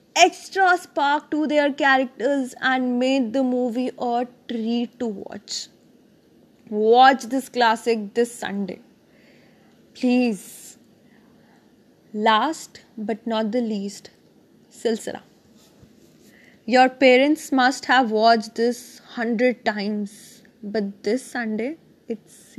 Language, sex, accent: English, female, Indian